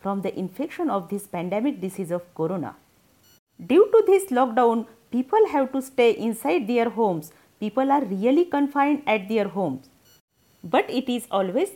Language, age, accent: Marathi, 40-59, native